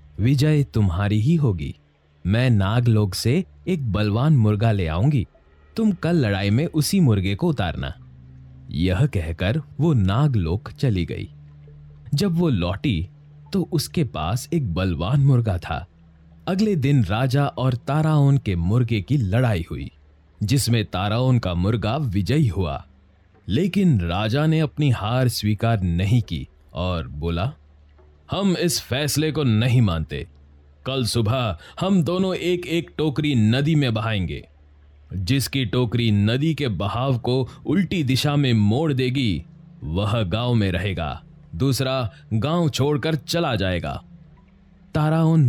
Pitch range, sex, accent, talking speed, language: 90-145 Hz, male, native, 130 wpm, Hindi